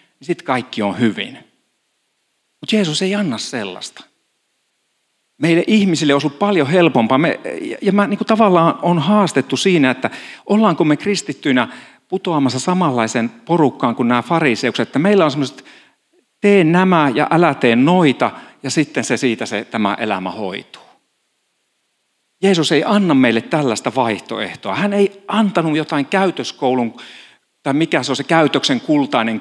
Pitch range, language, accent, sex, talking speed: 125-185 Hz, Finnish, native, male, 140 wpm